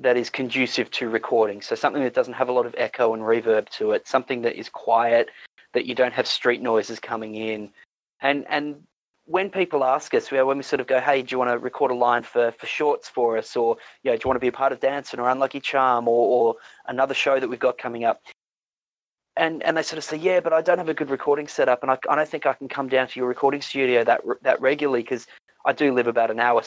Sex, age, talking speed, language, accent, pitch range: male, 30-49, 270 wpm, English, Australian, 125-150 Hz